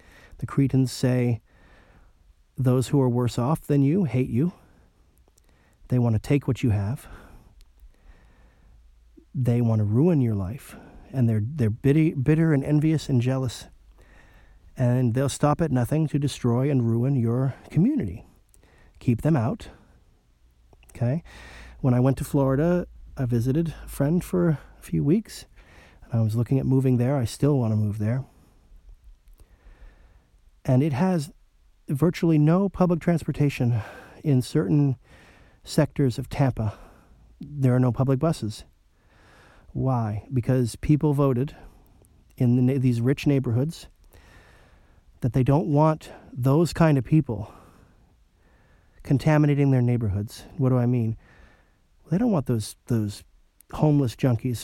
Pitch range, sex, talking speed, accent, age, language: 105-140 Hz, male, 135 wpm, American, 30-49, English